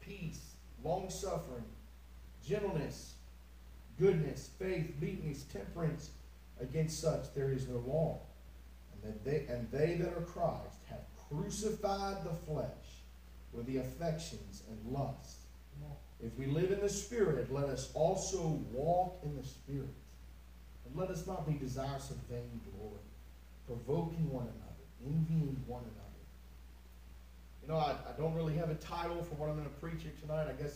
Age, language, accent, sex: 40-59, English, American, male